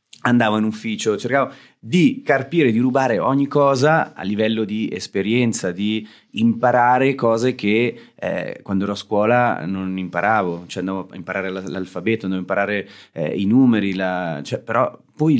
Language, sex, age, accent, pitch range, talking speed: Italian, male, 30-49, native, 95-125 Hz, 150 wpm